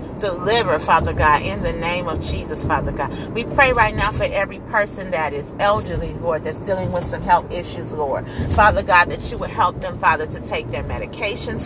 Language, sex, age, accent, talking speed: English, female, 40-59, American, 205 wpm